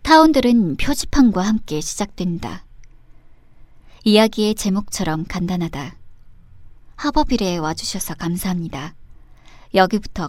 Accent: native